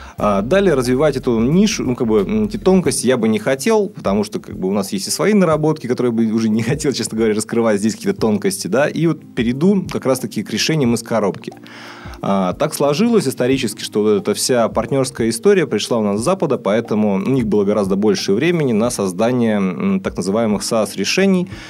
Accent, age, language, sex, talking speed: native, 30-49, Russian, male, 200 wpm